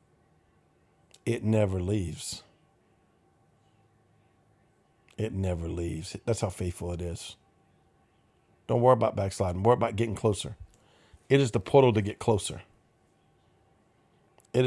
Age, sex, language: 50-69, male, English